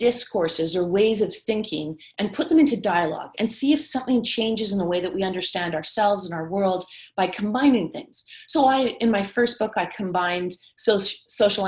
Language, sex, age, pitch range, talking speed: English, female, 30-49, 185-245 Hz, 185 wpm